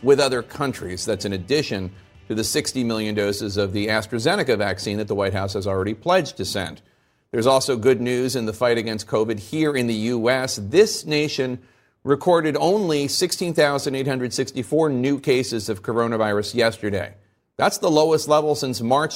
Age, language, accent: 40-59, English, American